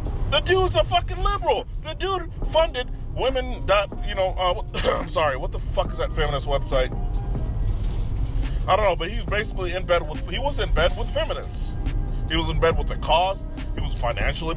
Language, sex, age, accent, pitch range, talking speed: English, male, 30-49, American, 110-155 Hz, 195 wpm